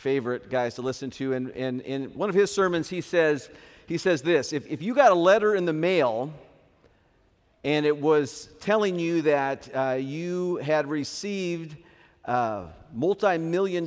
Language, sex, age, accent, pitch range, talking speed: English, male, 50-69, American, 145-185 Hz, 160 wpm